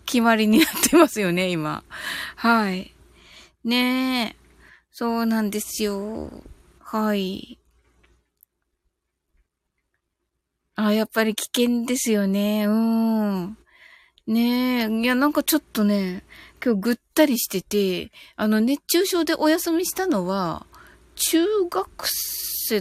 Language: Japanese